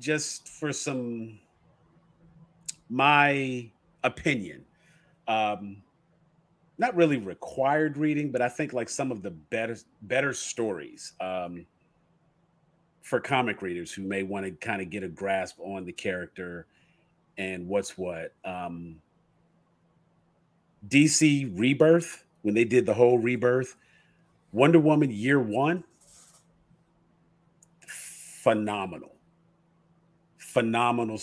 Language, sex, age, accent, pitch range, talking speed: English, male, 40-59, American, 105-165 Hz, 105 wpm